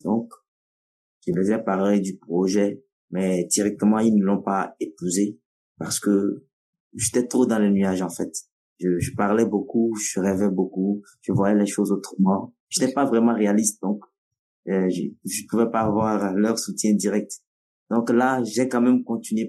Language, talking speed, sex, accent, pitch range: French, 170 wpm, male, French, 95-115 Hz